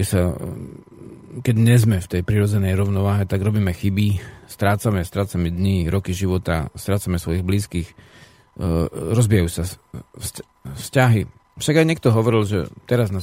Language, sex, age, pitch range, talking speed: Slovak, male, 40-59, 95-110 Hz, 125 wpm